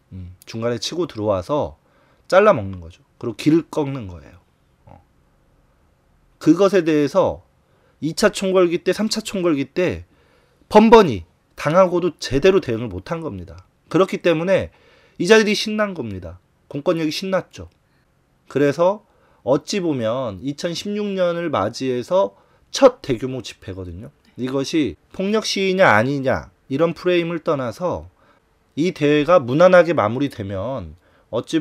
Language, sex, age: Korean, male, 30-49